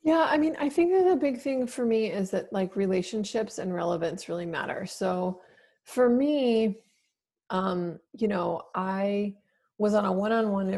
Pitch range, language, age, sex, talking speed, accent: 175-210 Hz, English, 30-49, female, 165 wpm, American